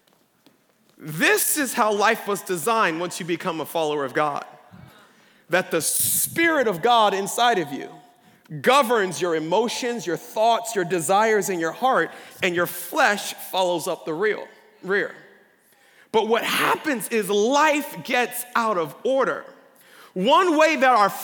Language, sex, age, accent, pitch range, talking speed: English, male, 40-59, American, 195-285 Hz, 145 wpm